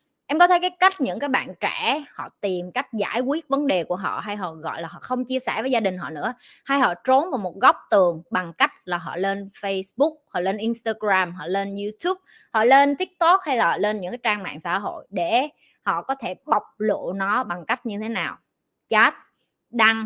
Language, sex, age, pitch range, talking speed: Vietnamese, female, 20-39, 190-265 Hz, 225 wpm